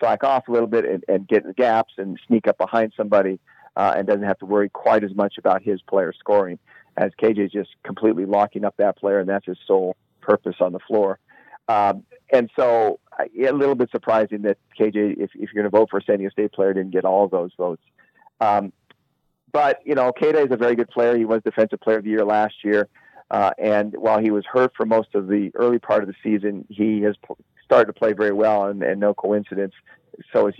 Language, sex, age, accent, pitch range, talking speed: English, male, 40-59, American, 100-115 Hz, 235 wpm